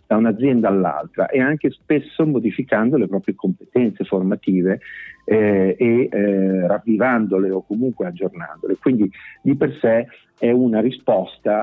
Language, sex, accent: Italian, male, native